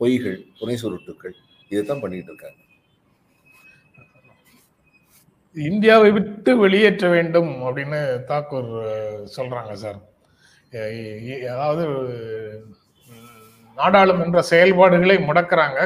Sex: male